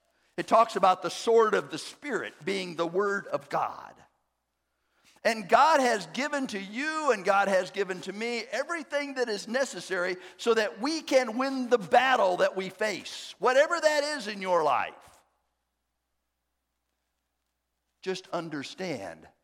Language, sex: English, male